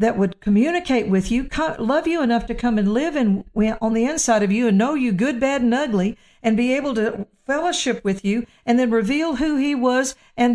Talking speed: 220 wpm